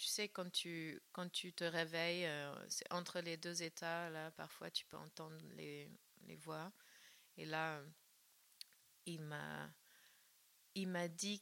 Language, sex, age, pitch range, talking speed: French, female, 30-49, 150-180 Hz, 150 wpm